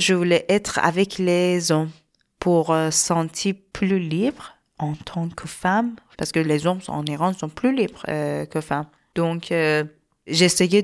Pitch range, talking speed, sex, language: 155-190 Hz, 160 wpm, female, French